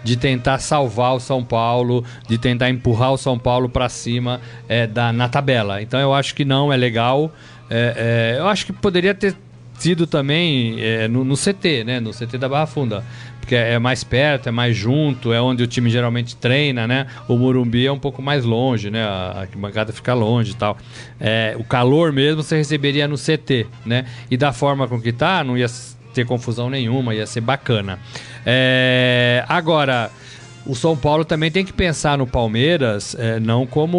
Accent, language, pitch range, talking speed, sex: Brazilian, Portuguese, 120-140 Hz, 185 wpm, male